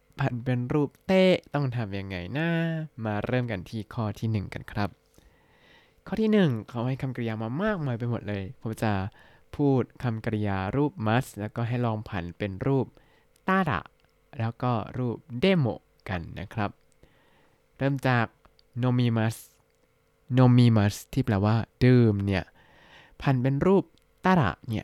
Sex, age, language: male, 20-39, Thai